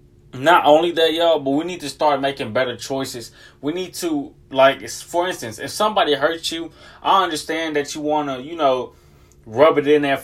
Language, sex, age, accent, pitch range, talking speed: English, male, 20-39, American, 135-170 Hz, 200 wpm